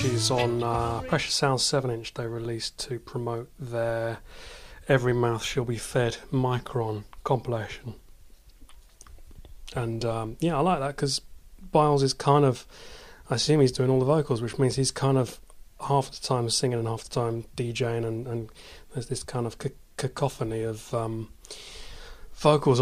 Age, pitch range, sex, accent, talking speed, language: 30-49, 115-135 Hz, male, British, 165 wpm, English